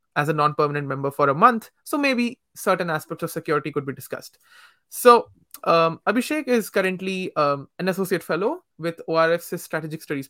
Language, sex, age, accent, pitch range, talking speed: English, male, 20-39, Indian, 150-200 Hz, 170 wpm